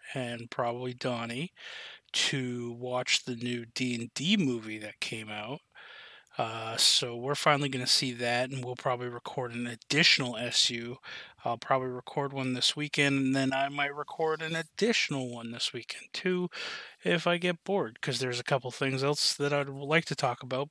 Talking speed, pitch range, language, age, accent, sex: 175 wpm, 125-150 Hz, English, 30-49, American, male